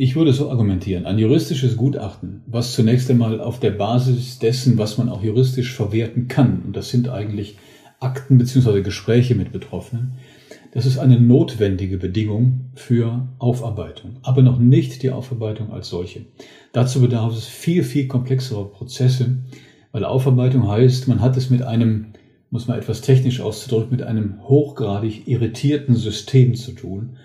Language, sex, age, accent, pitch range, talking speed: German, male, 40-59, German, 110-130 Hz, 155 wpm